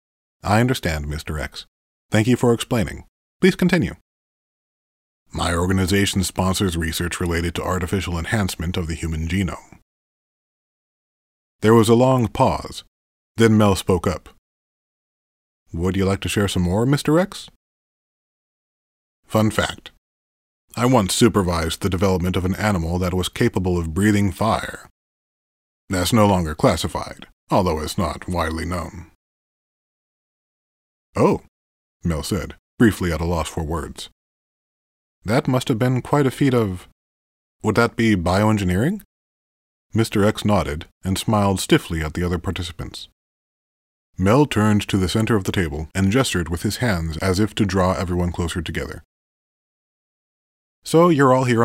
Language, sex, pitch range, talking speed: English, male, 85-110 Hz, 140 wpm